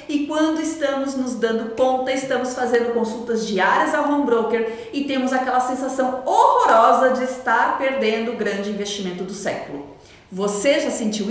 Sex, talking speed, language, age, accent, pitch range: female, 155 wpm, Portuguese, 40-59, Brazilian, 240-300 Hz